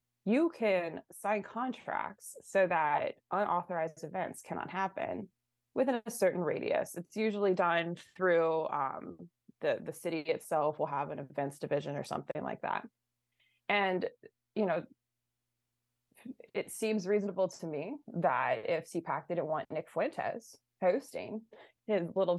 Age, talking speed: 20-39, 135 wpm